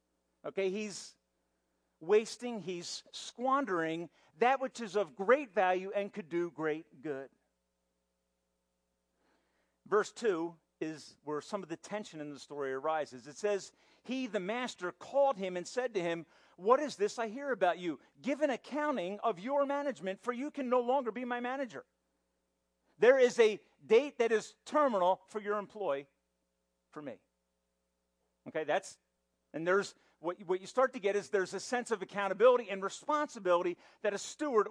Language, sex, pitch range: English, male, 155-235 Hz